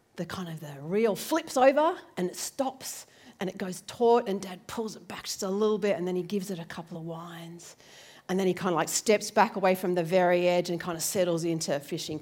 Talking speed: 255 wpm